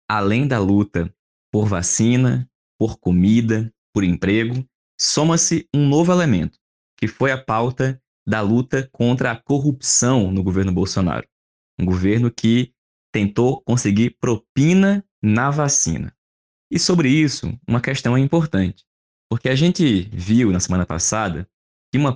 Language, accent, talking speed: Portuguese, Brazilian, 135 wpm